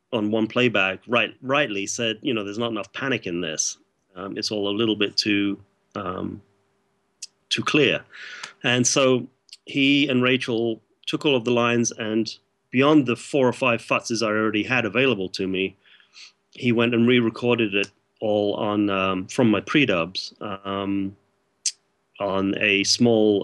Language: English